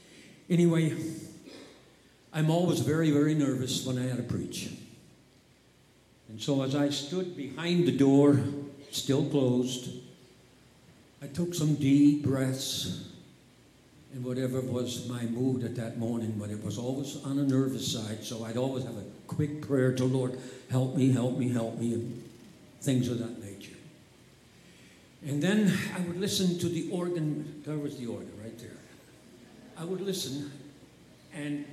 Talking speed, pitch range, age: 150 wpm, 125-160 Hz, 60-79